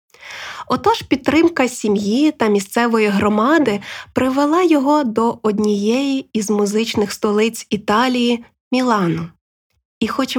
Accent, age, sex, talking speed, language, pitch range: native, 20-39, female, 105 wpm, Ukrainian, 200-255 Hz